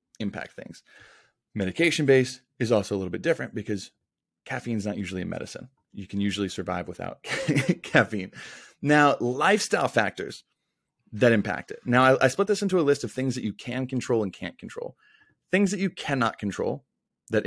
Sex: male